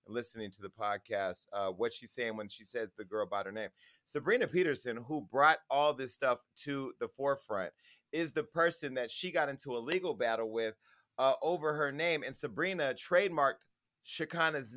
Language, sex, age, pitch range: English, male, 30-49, 125-165 Hz